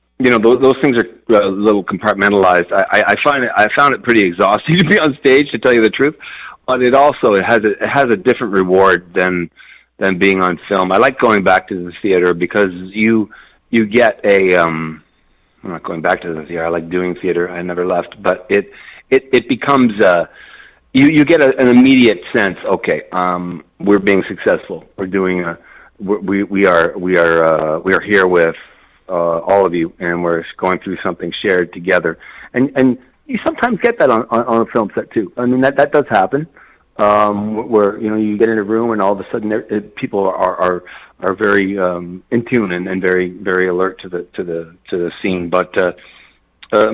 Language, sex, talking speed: English, male, 215 wpm